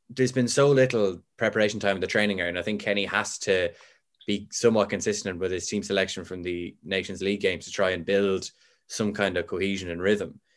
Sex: male